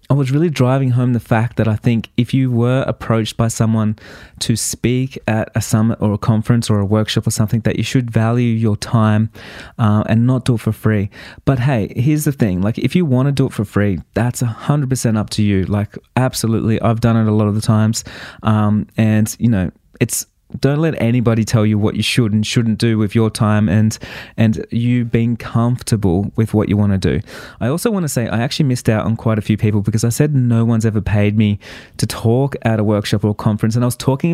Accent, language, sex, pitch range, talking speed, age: Australian, English, male, 110-125 Hz, 235 wpm, 20-39